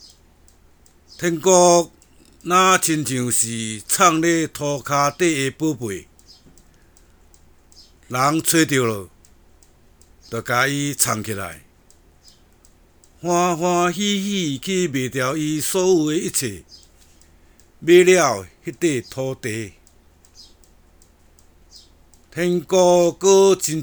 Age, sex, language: 60-79, male, Chinese